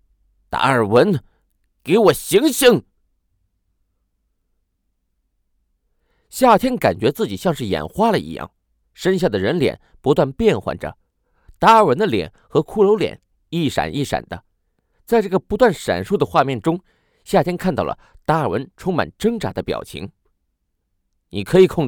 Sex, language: male, Chinese